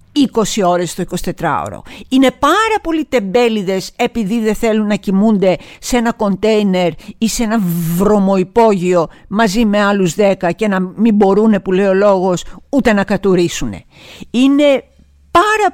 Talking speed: 135 wpm